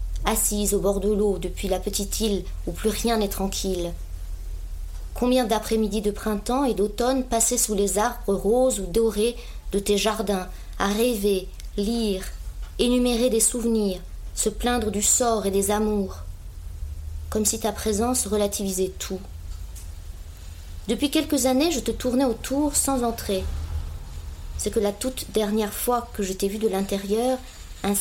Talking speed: 150 wpm